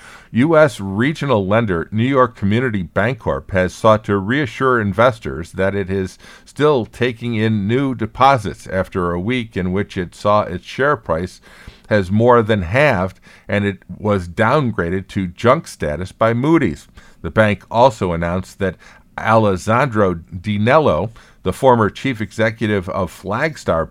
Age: 50-69